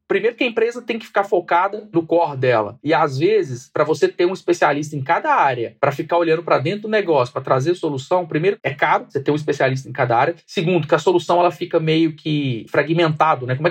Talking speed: 235 wpm